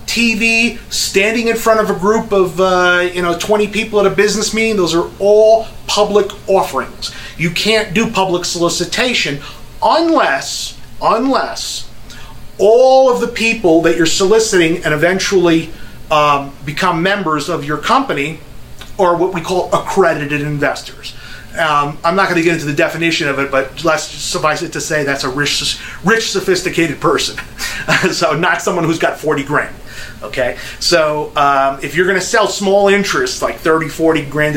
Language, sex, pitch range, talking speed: English, male, 140-190 Hz, 165 wpm